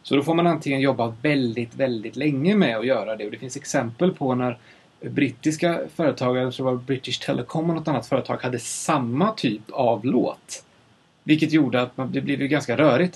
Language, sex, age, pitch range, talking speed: English, male, 30-49, 115-150 Hz, 185 wpm